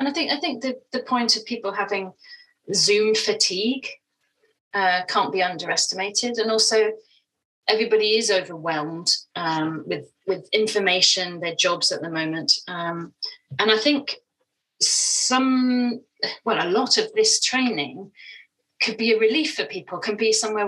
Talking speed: 150 wpm